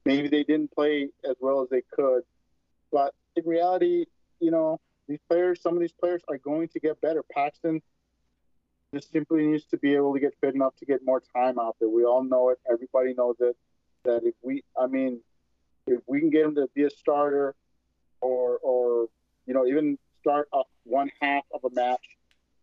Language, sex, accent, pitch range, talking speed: English, male, American, 125-165 Hz, 200 wpm